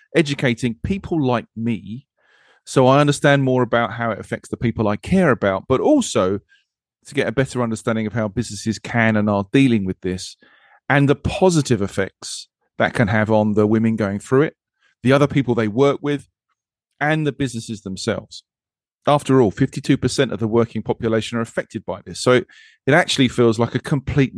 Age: 30-49